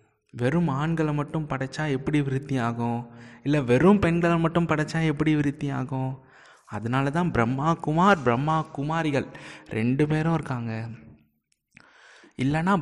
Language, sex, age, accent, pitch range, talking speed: Tamil, male, 20-39, native, 120-155 Hz, 115 wpm